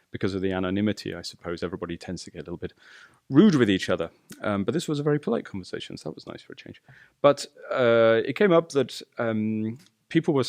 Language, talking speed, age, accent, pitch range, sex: English, 235 wpm, 30-49, British, 100-135 Hz, male